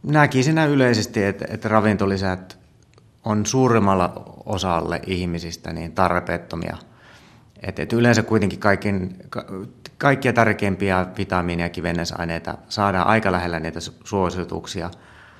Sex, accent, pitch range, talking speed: male, native, 85-105 Hz, 80 wpm